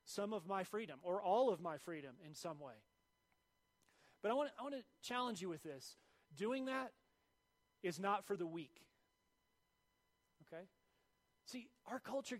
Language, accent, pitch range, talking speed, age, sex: English, American, 170-215 Hz, 155 wpm, 30-49, male